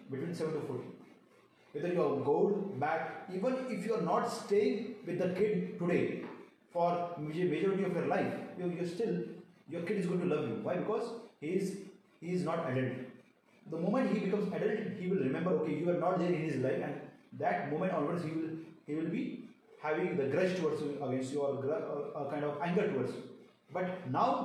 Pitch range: 160-205 Hz